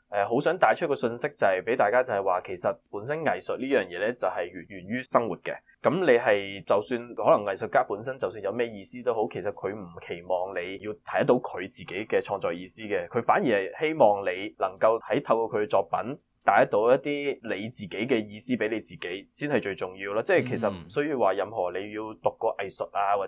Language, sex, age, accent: Chinese, male, 20-39, native